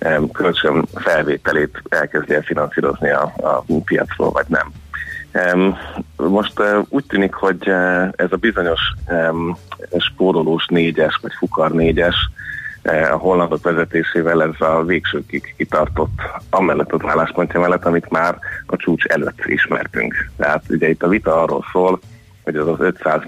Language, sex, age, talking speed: Hungarian, male, 30-49, 125 wpm